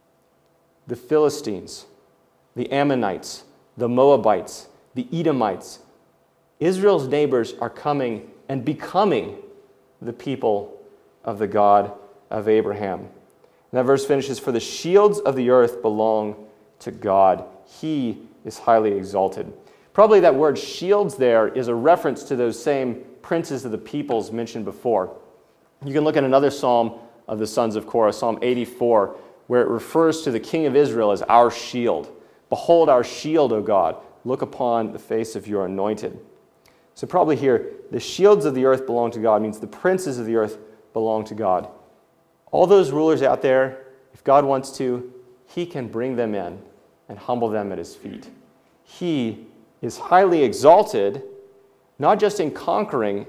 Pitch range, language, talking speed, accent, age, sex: 115-145 Hz, English, 155 wpm, American, 30-49, male